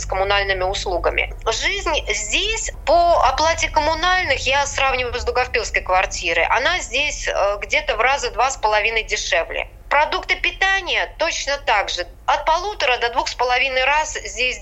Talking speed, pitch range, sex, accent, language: 135 wpm, 235-335 Hz, female, native, Russian